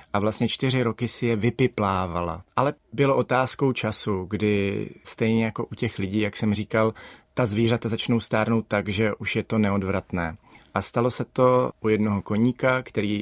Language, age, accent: Czech, 30-49, native